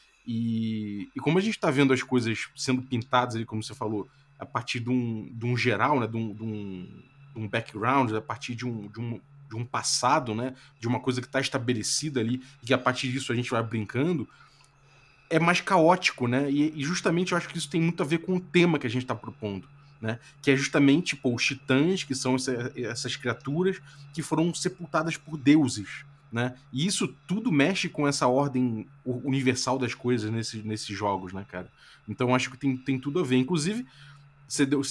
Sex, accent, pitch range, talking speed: male, Brazilian, 120-155 Hz, 205 wpm